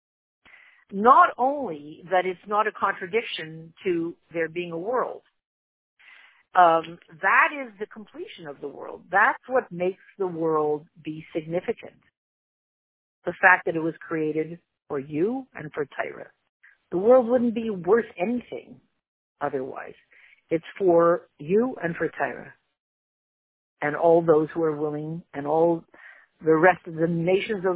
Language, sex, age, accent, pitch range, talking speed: English, female, 50-69, American, 165-205 Hz, 140 wpm